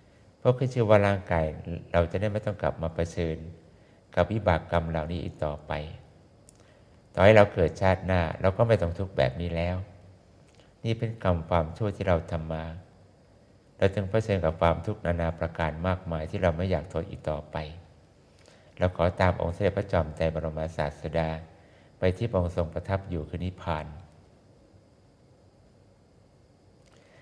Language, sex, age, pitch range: English, male, 60-79, 85-100 Hz